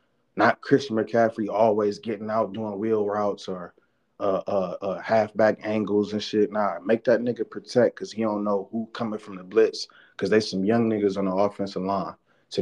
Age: 30-49